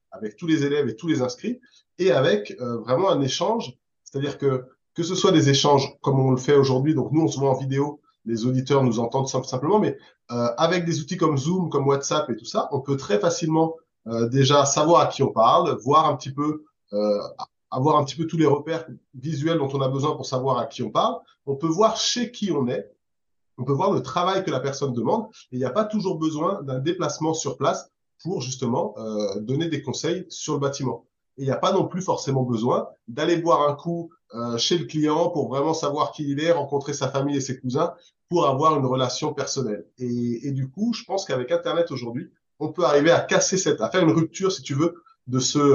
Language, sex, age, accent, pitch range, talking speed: French, male, 30-49, French, 130-165 Hz, 235 wpm